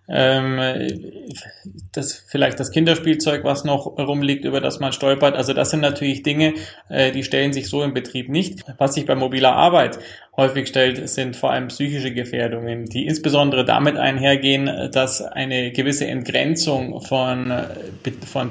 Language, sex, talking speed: German, male, 145 wpm